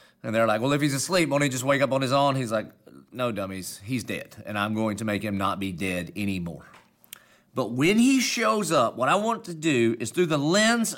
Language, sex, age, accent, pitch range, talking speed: English, male, 40-59, American, 105-155 Hz, 245 wpm